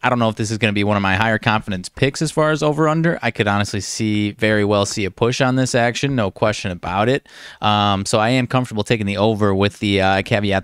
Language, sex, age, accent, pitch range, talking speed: English, male, 20-39, American, 100-120 Hz, 265 wpm